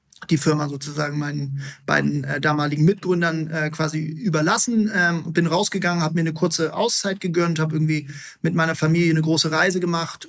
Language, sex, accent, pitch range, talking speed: German, male, German, 160-180 Hz, 170 wpm